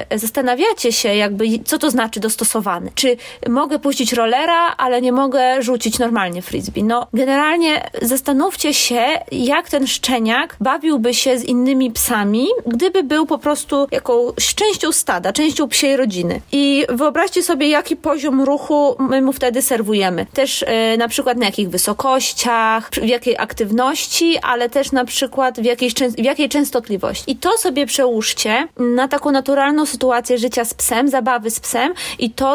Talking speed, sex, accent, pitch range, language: 150 wpm, female, native, 230-280 Hz, Polish